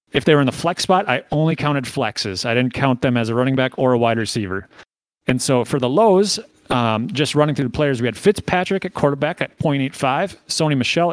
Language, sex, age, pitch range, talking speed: English, male, 30-49, 125-185 Hz, 230 wpm